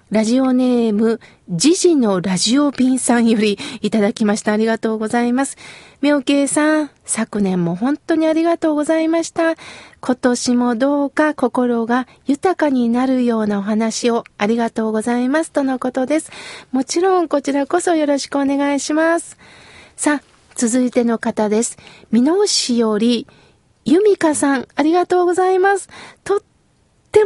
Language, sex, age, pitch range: Japanese, female, 40-59, 235-325 Hz